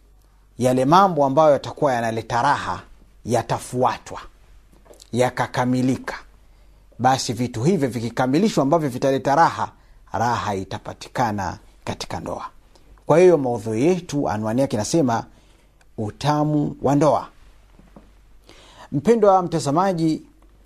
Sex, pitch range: male, 115-165 Hz